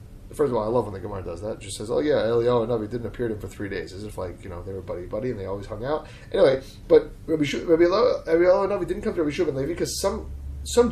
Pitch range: 105-160 Hz